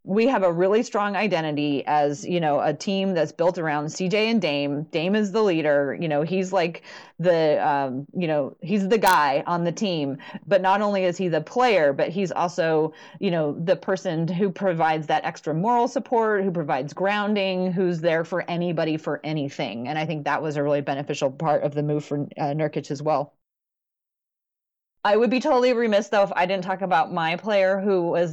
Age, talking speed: 30-49, 205 wpm